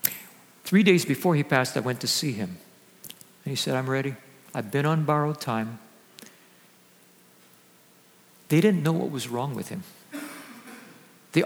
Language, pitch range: English, 125-170 Hz